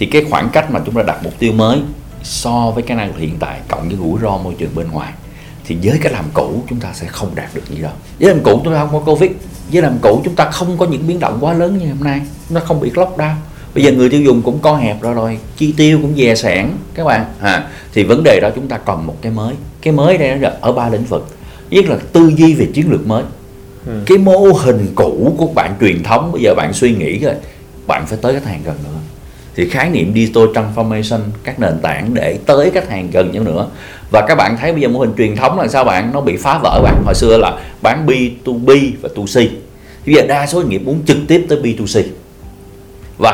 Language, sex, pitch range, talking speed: Vietnamese, male, 100-150 Hz, 255 wpm